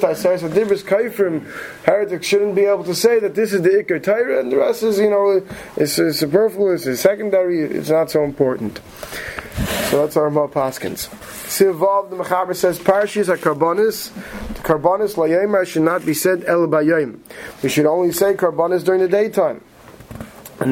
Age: 30-49